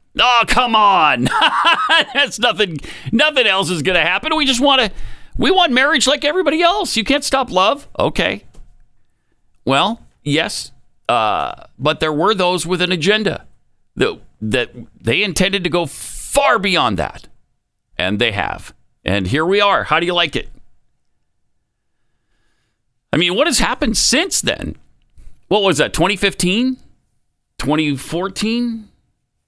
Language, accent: English, American